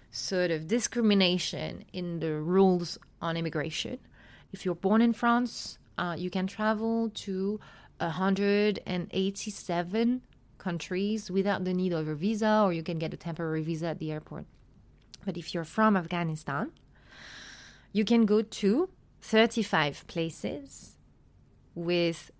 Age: 30-49